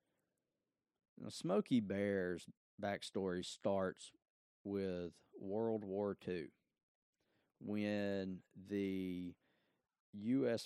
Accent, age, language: American, 40-59, English